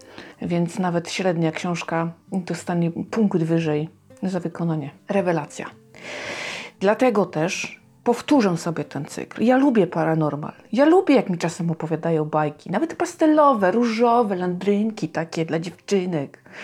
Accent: native